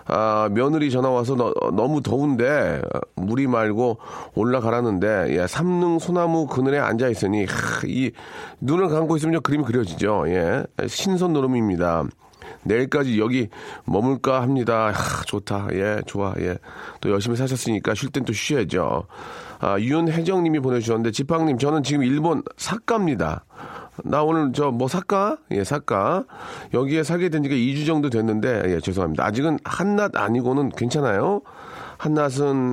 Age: 40-59